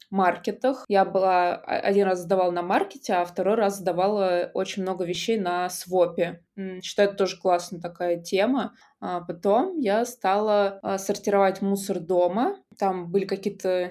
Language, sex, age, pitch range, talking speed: Russian, female, 20-39, 175-200 Hz, 140 wpm